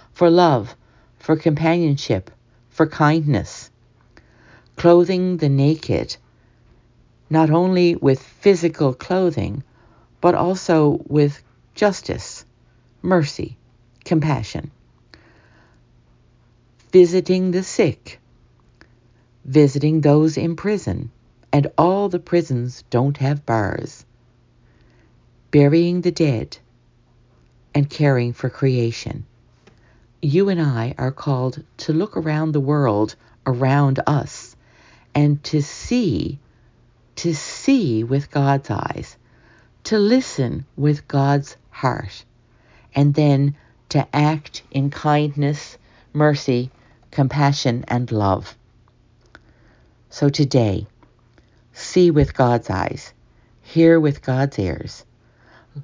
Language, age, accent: English, 50-69, American